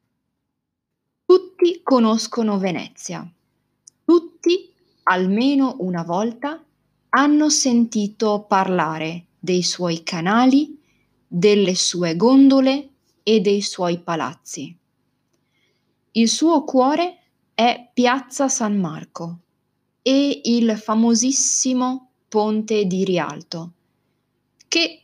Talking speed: 80 wpm